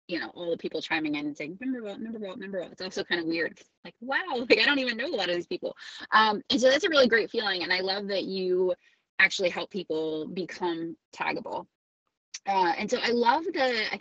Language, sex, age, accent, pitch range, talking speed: English, female, 20-39, American, 175-260 Hz, 245 wpm